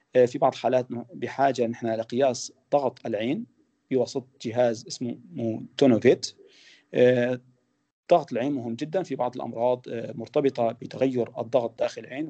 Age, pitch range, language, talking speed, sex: 40-59, 115-135 Hz, Arabic, 115 wpm, male